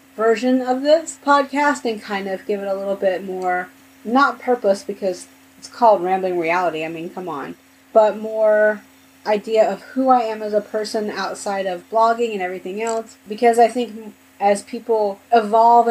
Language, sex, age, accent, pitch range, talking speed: English, female, 30-49, American, 190-225 Hz, 175 wpm